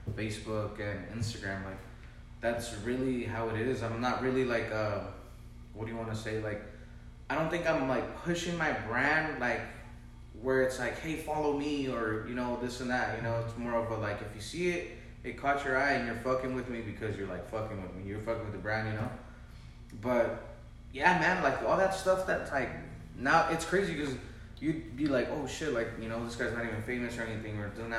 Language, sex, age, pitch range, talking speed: English, male, 20-39, 110-130 Hz, 225 wpm